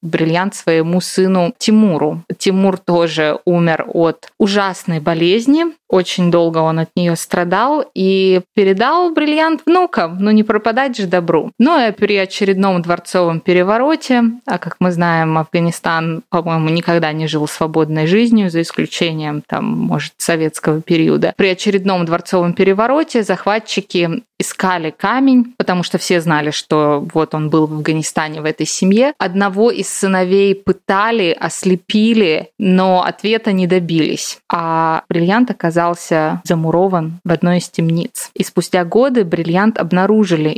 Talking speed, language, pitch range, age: 135 wpm, Russian, 165-205 Hz, 20-39